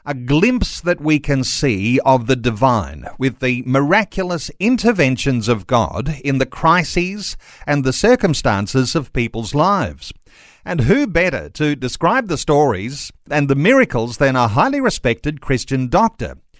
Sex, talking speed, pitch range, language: male, 145 wpm, 130-170 Hz, English